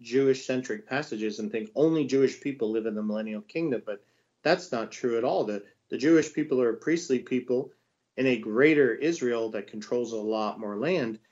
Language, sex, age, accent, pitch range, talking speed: English, male, 40-59, American, 115-140 Hz, 195 wpm